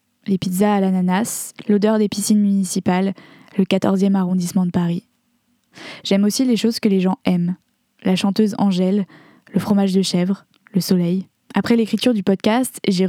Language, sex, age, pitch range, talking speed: French, female, 10-29, 185-215 Hz, 160 wpm